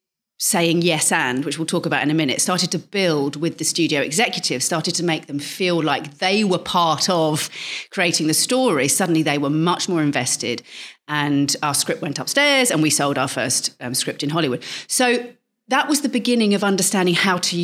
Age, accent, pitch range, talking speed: 40-59, British, 155-210 Hz, 200 wpm